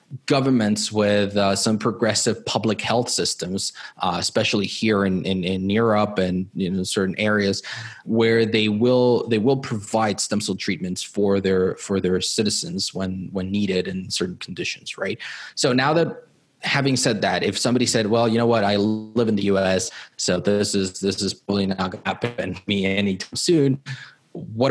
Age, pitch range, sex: 20-39, 95-125 Hz, male